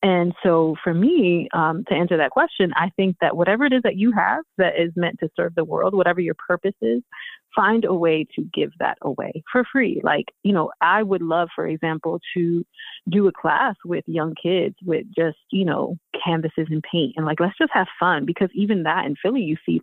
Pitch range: 160-195 Hz